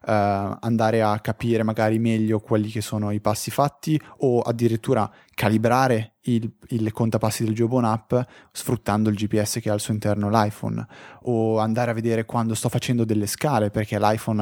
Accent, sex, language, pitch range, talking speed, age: Italian, male, English, 105-125 Hz, 165 wpm, 20-39